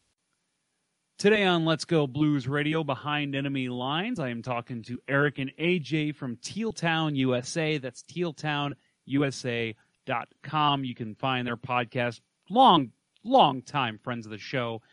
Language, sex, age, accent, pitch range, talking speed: English, male, 30-49, American, 125-165 Hz, 135 wpm